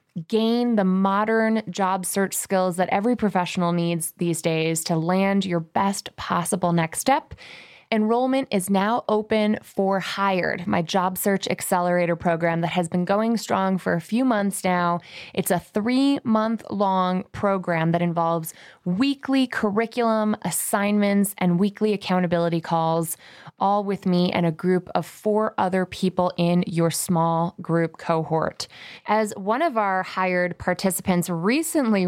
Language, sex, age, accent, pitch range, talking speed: English, female, 20-39, American, 175-215 Hz, 140 wpm